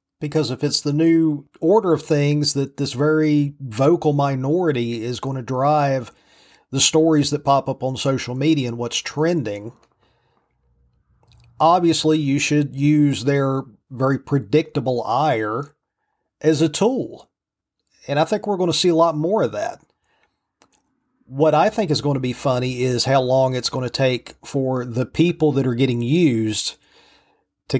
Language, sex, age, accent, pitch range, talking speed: English, male, 40-59, American, 125-155 Hz, 160 wpm